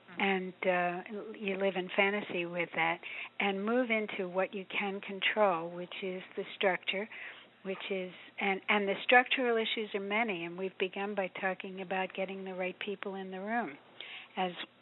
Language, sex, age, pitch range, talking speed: English, female, 60-79, 190-210 Hz, 170 wpm